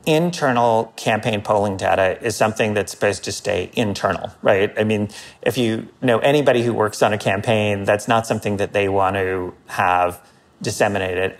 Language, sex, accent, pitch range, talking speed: English, male, American, 95-120 Hz, 170 wpm